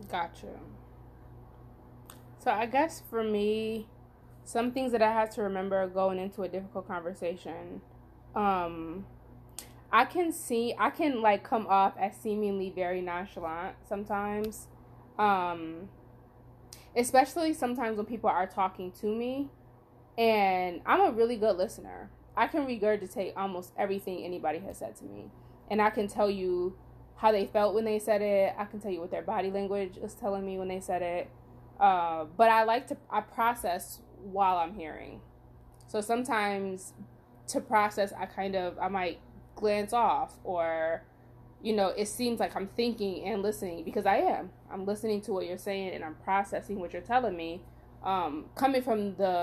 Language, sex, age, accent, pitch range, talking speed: English, female, 20-39, American, 165-215 Hz, 165 wpm